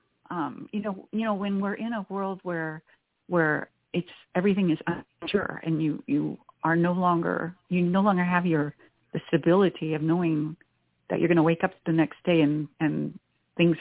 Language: English